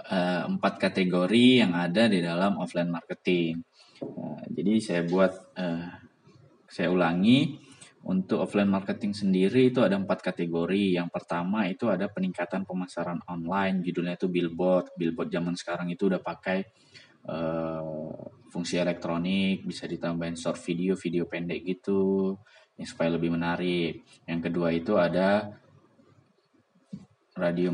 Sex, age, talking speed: male, 20-39, 125 wpm